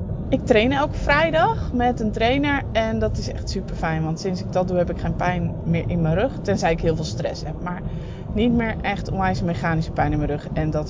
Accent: Dutch